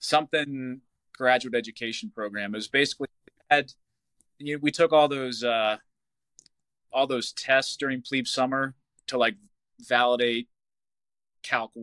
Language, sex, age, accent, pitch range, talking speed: English, male, 20-39, American, 110-135 Hz, 125 wpm